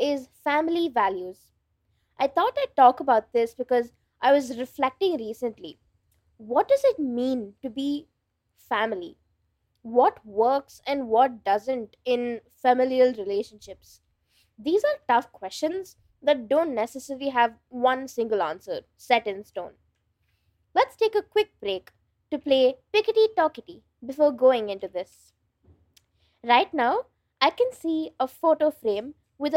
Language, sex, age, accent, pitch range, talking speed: English, female, 20-39, Indian, 230-295 Hz, 130 wpm